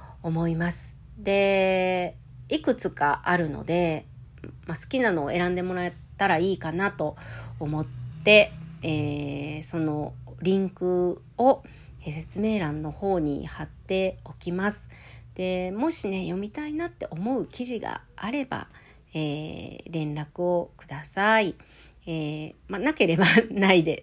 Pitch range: 155-195 Hz